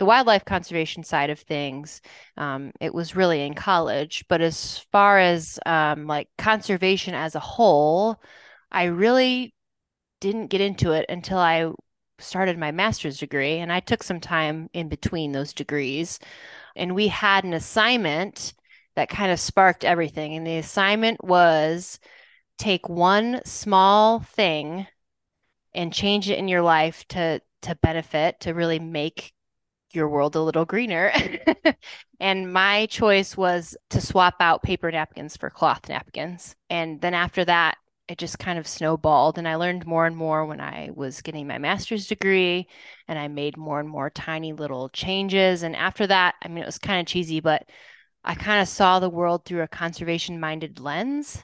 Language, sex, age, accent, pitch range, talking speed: English, female, 20-39, American, 155-195 Hz, 165 wpm